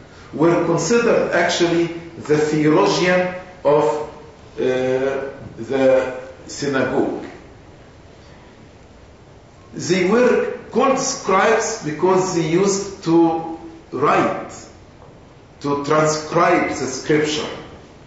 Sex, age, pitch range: male, 50-69, 150-200 Hz